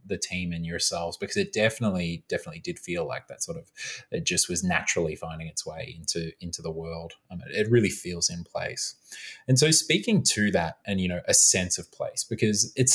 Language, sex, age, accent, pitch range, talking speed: English, male, 20-39, Australian, 85-125 Hz, 215 wpm